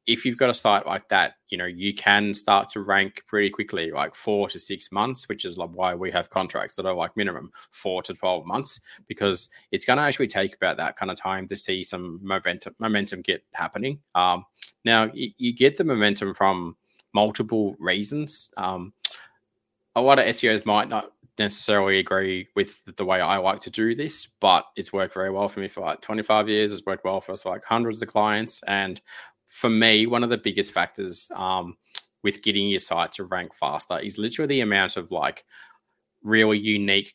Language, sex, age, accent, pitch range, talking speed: English, male, 20-39, Australian, 95-110 Hz, 200 wpm